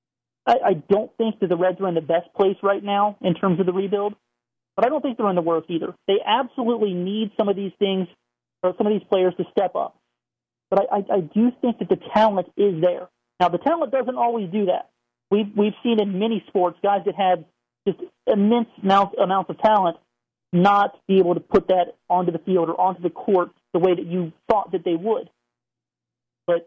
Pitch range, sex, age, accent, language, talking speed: 175-210 Hz, male, 40-59, American, English, 220 wpm